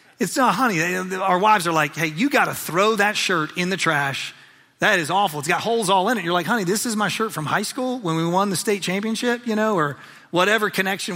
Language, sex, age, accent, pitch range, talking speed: English, male, 30-49, American, 150-205 Hz, 255 wpm